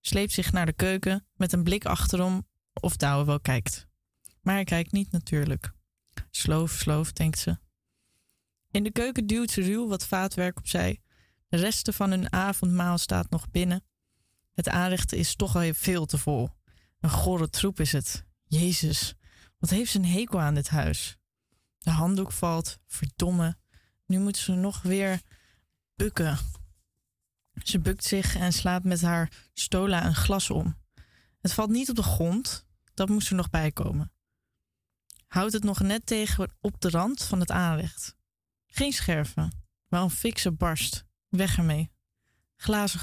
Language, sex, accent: Dutch, female, Dutch